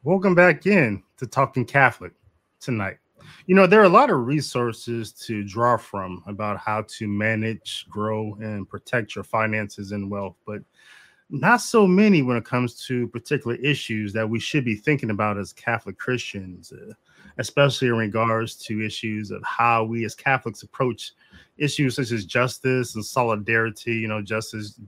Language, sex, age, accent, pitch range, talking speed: English, male, 20-39, American, 105-135 Hz, 165 wpm